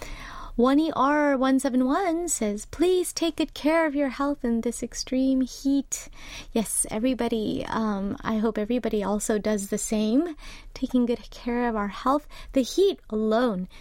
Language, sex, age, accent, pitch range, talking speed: English, female, 30-49, American, 225-285 Hz, 140 wpm